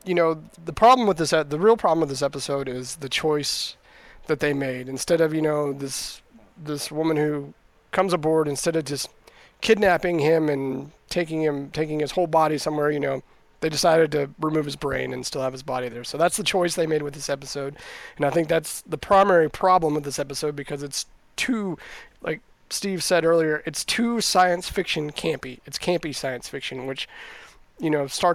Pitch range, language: 140-175 Hz, English